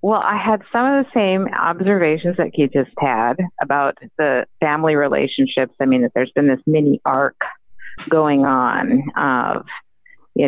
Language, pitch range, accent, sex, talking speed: English, 145-185 Hz, American, female, 160 wpm